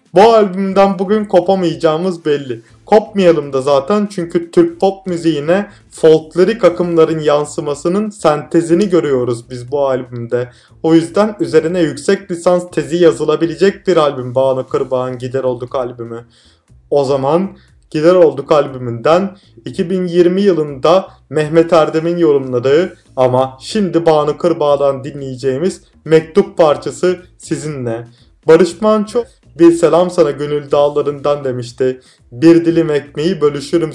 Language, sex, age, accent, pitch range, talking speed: Turkish, male, 30-49, native, 130-175 Hz, 115 wpm